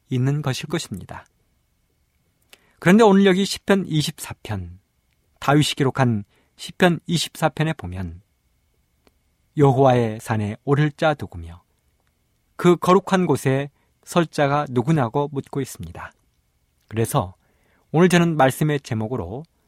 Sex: male